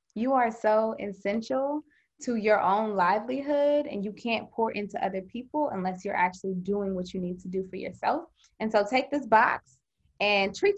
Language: English